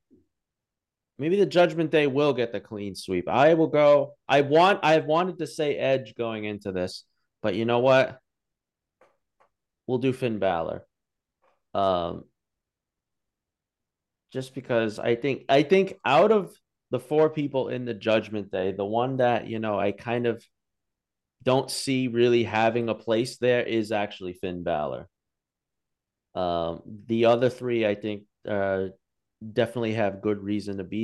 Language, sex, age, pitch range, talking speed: English, male, 30-49, 105-130 Hz, 150 wpm